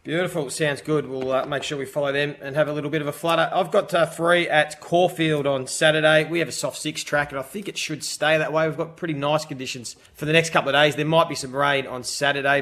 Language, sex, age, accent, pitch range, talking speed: English, male, 30-49, Australian, 140-165 Hz, 275 wpm